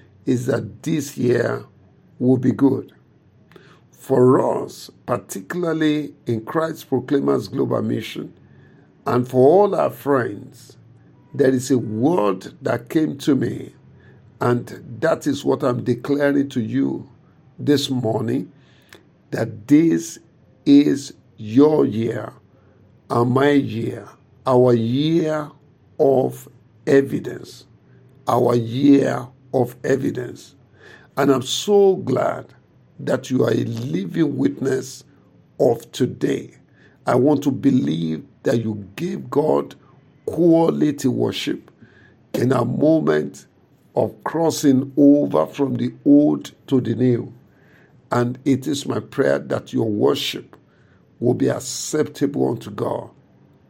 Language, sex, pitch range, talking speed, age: English, male, 120-145 Hz, 115 wpm, 50-69